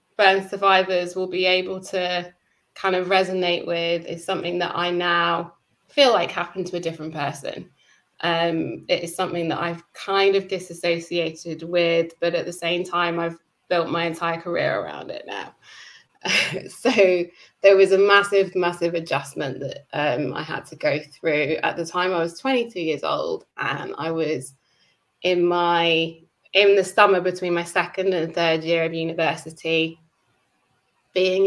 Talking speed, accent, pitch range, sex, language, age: 160 wpm, British, 170-185 Hz, female, English, 20-39